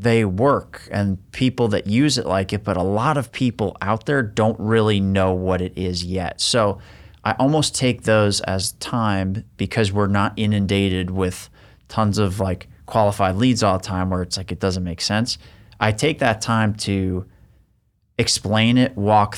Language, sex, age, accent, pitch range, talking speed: English, male, 30-49, American, 95-120 Hz, 180 wpm